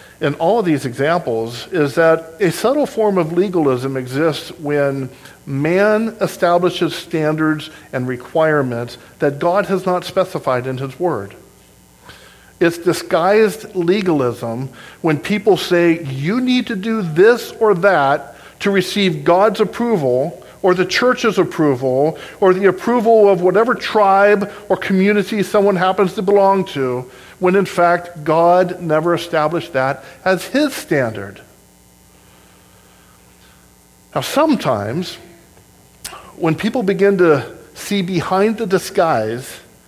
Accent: American